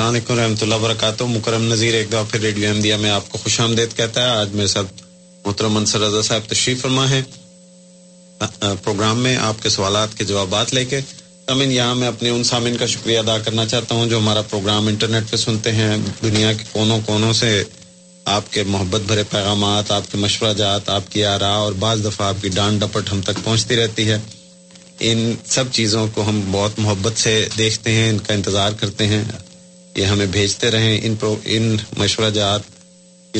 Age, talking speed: 30-49, 185 wpm